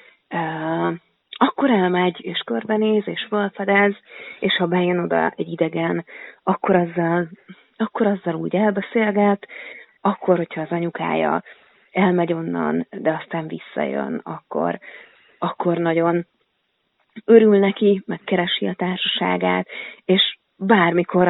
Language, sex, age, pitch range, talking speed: Hungarian, female, 30-49, 170-215 Hz, 105 wpm